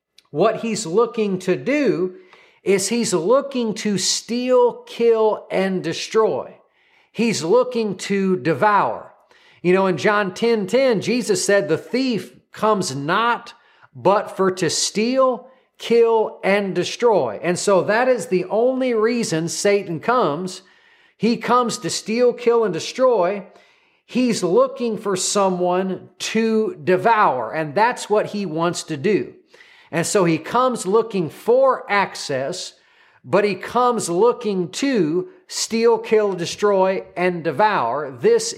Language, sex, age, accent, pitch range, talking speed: English, male, 40-59, American, 185-250 Hz, 130 wpm